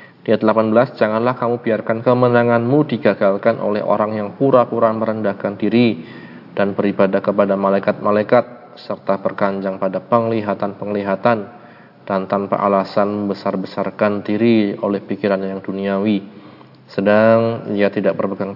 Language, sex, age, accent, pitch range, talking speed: Indonesian, male, 20-39, native, 100-110 Hz, 110 wpm